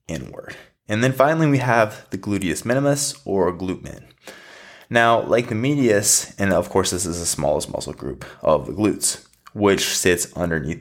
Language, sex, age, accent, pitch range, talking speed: English, male, 20-39, American, 90-125 Hz, 170 wpm